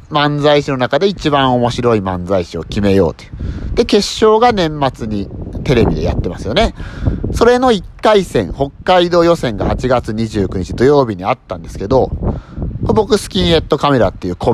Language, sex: Japanese, male